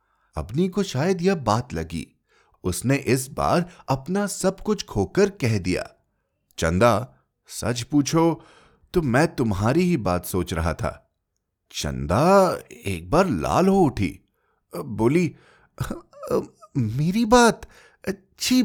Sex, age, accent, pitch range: male, 30-49, native, 115-180 Hz